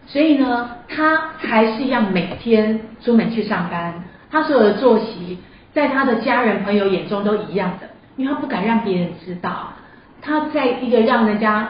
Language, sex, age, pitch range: Chinese, female, 40-59, 200-250 Hz